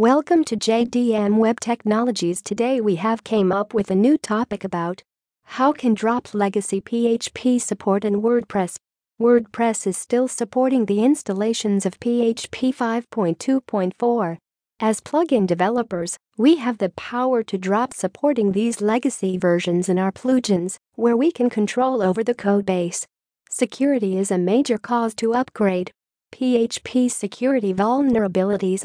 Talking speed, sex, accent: 135 wpm, female, American